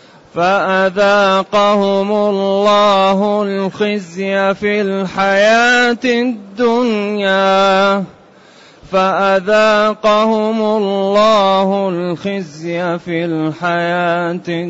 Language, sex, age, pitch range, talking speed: Arabic, male, 30-49, 200-255 Hz, 45 wpm